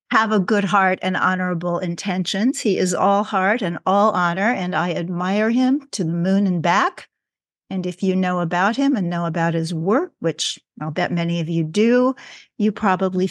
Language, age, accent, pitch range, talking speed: English, 50-69, American, 180-220 Hz, 195 wpm